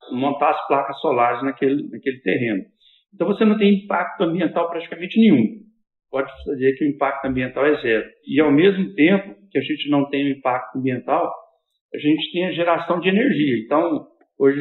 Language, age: English, 60-79